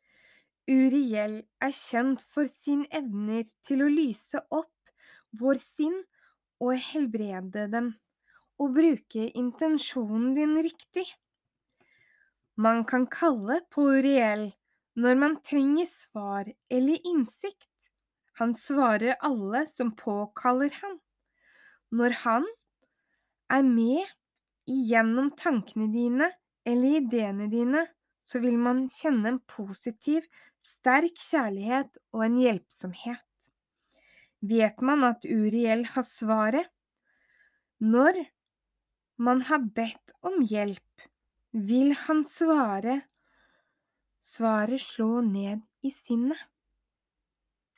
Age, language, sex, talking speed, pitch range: 20-39, Danish, female, 95 wpm, 230-300 Hz